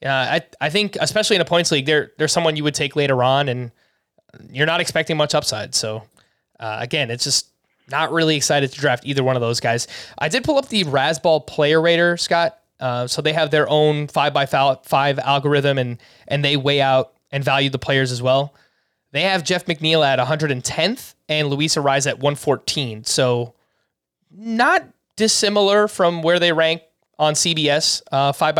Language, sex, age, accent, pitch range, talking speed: English, male, 20-39, American, 140-170 Hz, 185 wpm